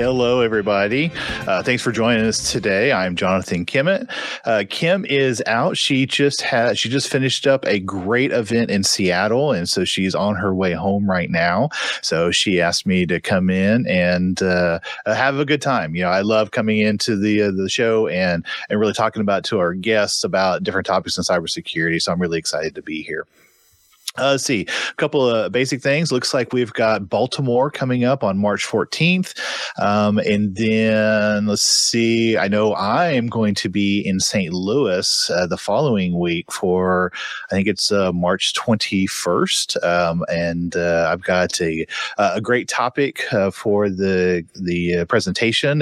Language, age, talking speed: English, 40-59, 180 wpm